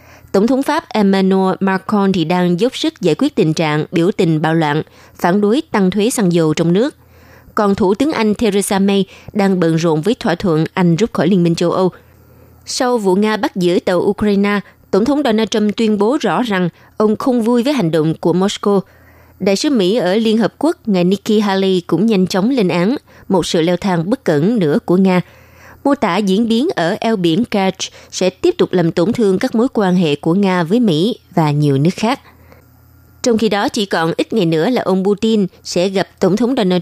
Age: 20-39